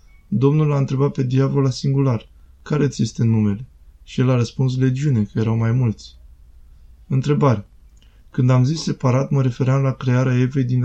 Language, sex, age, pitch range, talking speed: Romanian, male, 20-39, 110-135 Hz, 165 wpm